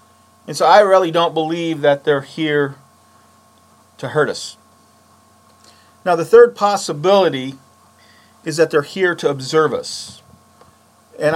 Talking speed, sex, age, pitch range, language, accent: 125 wpm, male, 40-59, 155-195 Hz, English, American